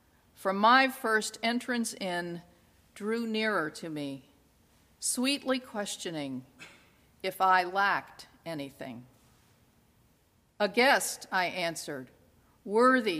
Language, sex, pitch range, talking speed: English, female, 165-215 Hz, 90 wpm